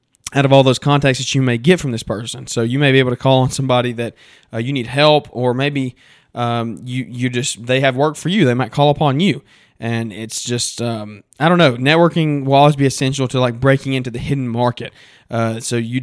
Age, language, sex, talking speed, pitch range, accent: 20-39, English, male, 240 wpm, 120-140 Hz, American